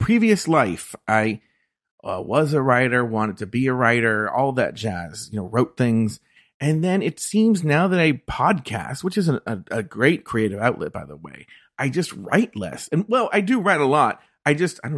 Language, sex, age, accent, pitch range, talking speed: English, male, 40-59, American, 110-150 Hz, 210 wpm